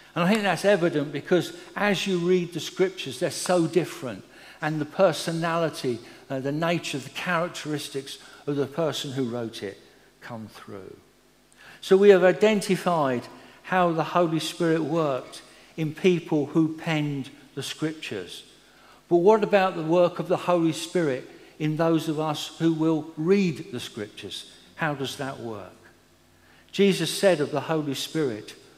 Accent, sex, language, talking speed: British, male, English, 150 wpm